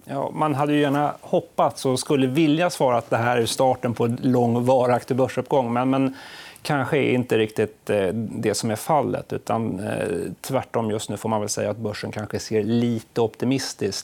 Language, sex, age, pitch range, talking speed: Swedish, male, 30-49, 110-130 Hz, 185 wpm